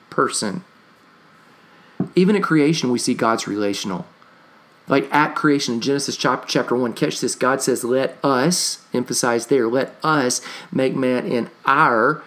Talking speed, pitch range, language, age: 140 wpm, 130-175 Hz, English, 40-59